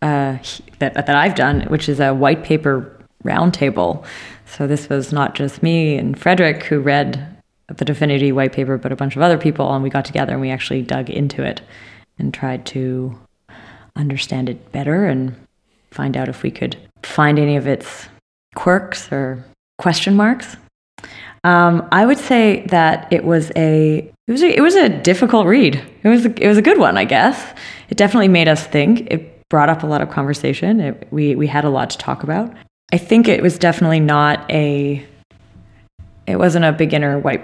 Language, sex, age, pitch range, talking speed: English, female, 20-39, 135-170 Hz, 195 wpm